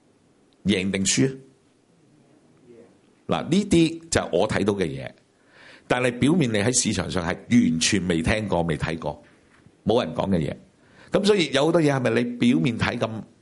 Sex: male